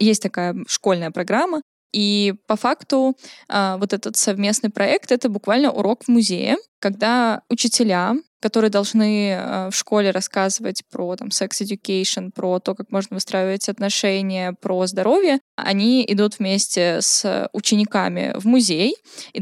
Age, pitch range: 10-29, 205-245 Hz